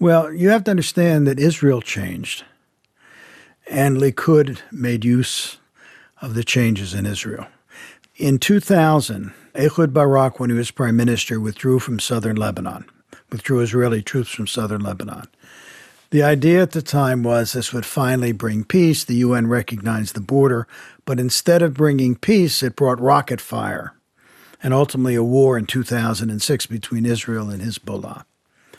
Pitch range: 115-145 Hz